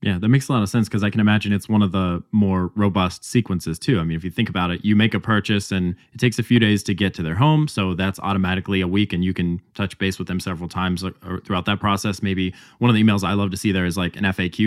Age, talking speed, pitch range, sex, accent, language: 20-39, 295 wpm, 95-115 Hz, male, American, English